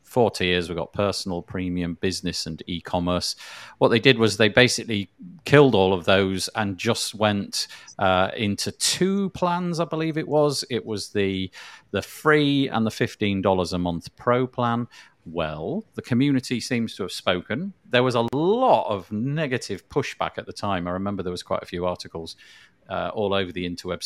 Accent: British